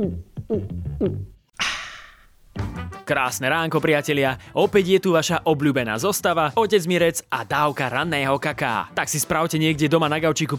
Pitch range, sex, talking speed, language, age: 140-180 Hz, male, 125 wpm, Slovak, 20-39